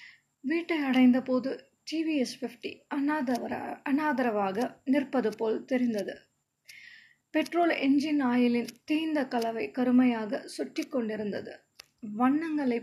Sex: female